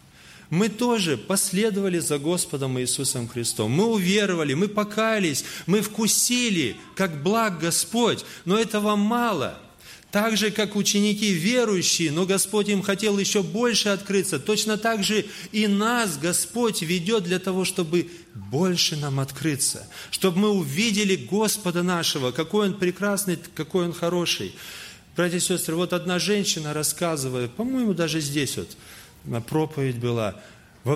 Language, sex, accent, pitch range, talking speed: Russian, male, native, 125-190 Hz, 135 wpm